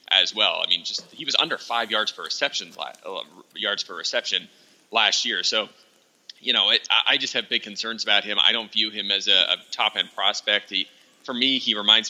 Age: 30-49